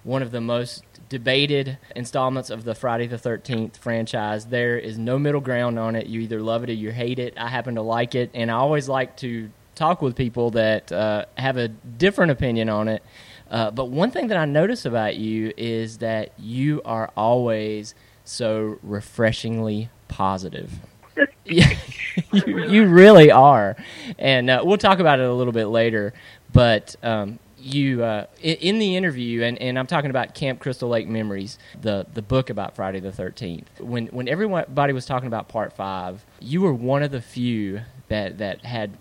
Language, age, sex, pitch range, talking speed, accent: English, 20-39, male, 110-140 Hz, 185 wpm, American